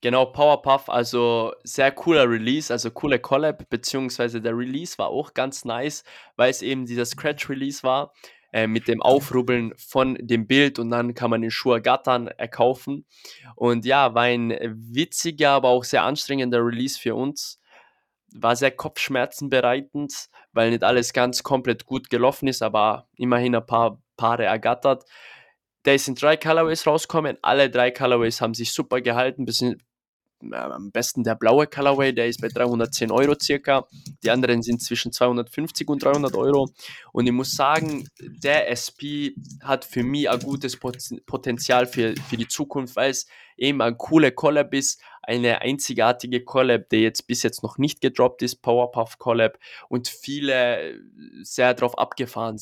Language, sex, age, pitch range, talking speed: German, male, 20-39, 120-135 Hz, 160 wpm